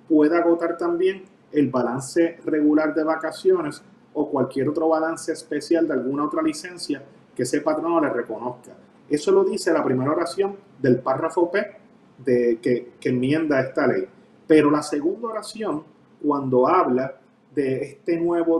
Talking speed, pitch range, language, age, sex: 150 wpm, 135-170 Hz, Spanish, 30-49, male